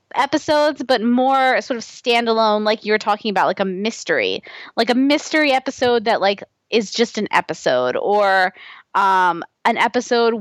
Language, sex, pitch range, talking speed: English, female, 195-265 Hz, 155 wpm